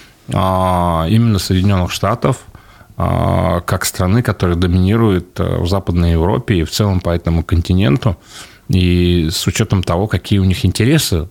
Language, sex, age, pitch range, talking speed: Russian, male, 30-49, 95-125 Hz, 125 wpm